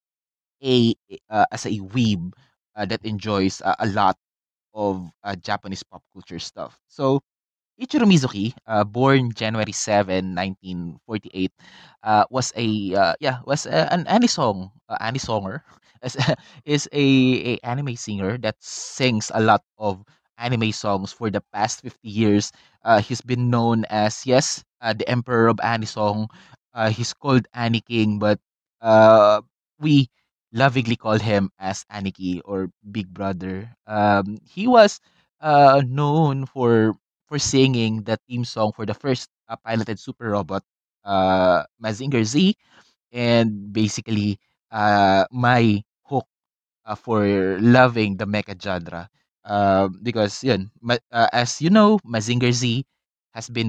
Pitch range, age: 100-125 Hz, 20-39